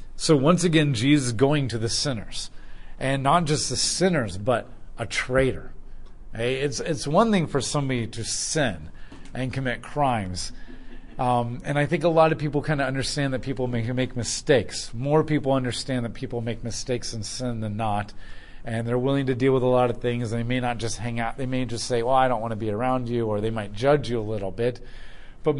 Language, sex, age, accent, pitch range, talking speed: English, male, 40-59, American, 110-140 Hz, 220 wpm